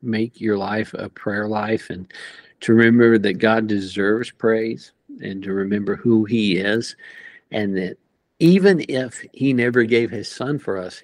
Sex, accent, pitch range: male, American, 100-120 Hz